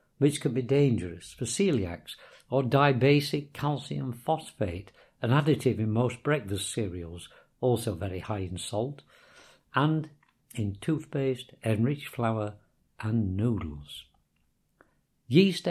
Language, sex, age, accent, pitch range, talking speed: English, male, 60-79, British, 105-140 Hz, 110 wpm